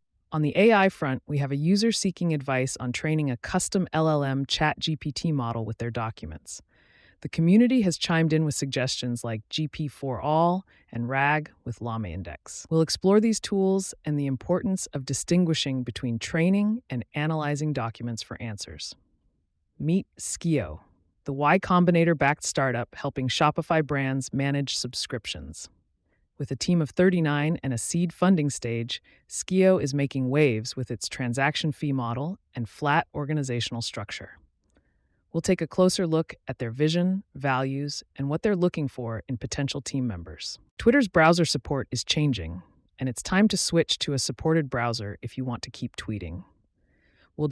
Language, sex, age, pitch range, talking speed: English, female, 30-49, 120-160 Hz, 155 wpm